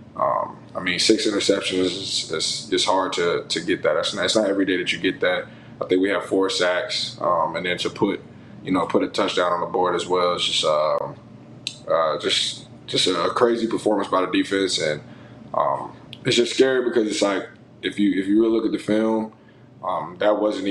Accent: American